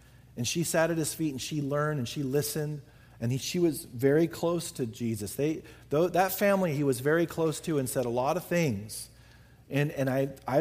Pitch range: 135-185 Hz